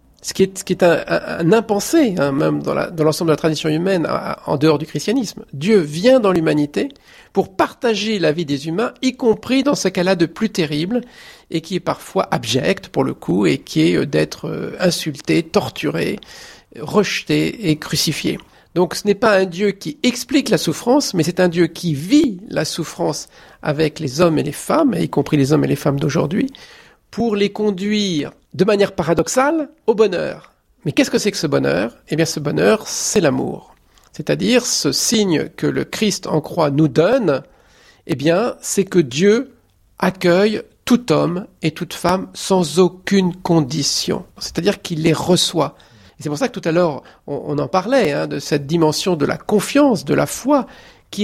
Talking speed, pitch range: 195 wpm, 160-215 Hz